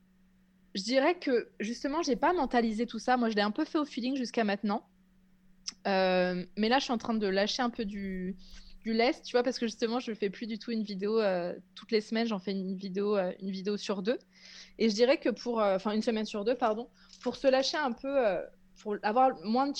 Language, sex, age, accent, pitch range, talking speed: French, female, 20-39, French, 200-245 Hz, 250 wpm